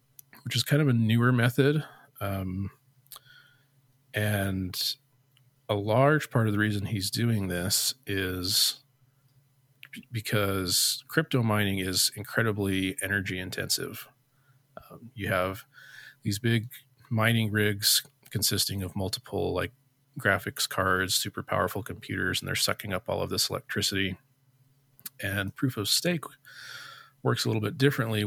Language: English